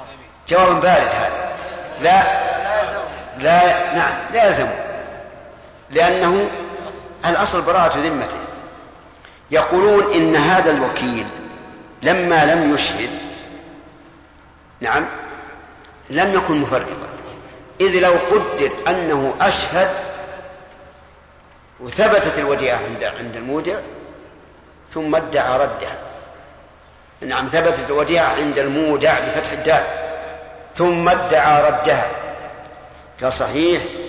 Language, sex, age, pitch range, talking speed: Arabic, male, 50-69, 140-190 Hz, 85 wpm